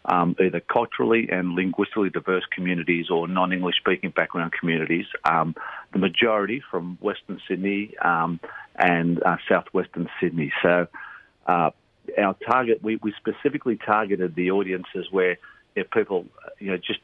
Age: 40-59